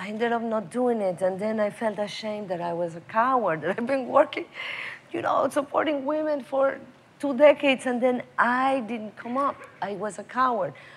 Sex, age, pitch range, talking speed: female, 40-59, 180-240 Hz, 200 wpm